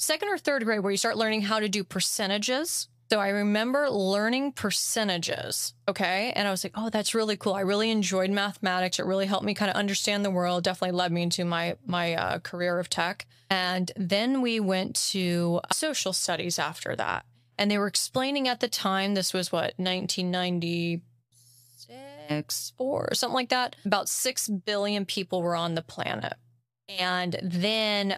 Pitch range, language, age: 175-215 Hz, English, 20-39